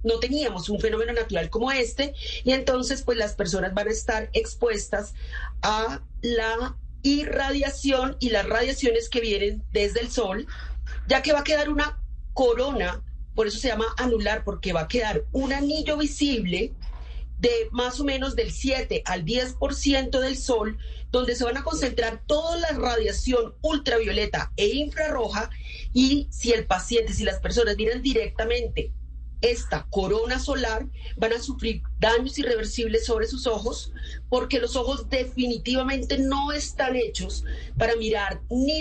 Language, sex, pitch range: Spanish, female, 220-275 Hz